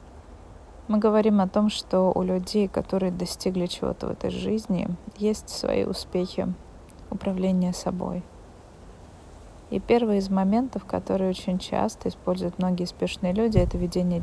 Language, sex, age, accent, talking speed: Russian, female, 20-39, native, 130 wpm